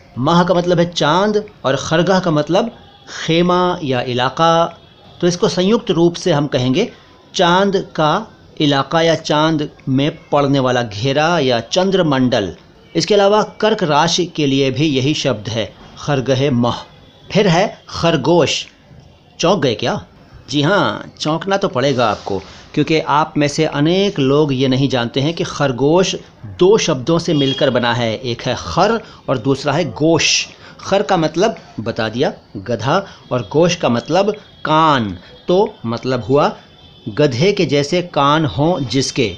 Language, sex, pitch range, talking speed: Hindi, male, 135-180 Hz, 150 wpm